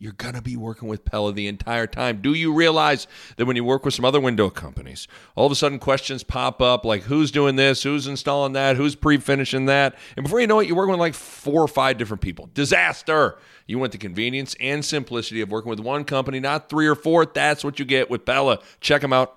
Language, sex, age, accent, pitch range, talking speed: English, male, 40-59, American, 115-145 Hz, 240 wpm